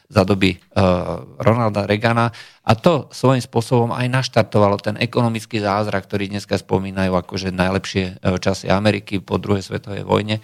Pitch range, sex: 105-130 Hz, male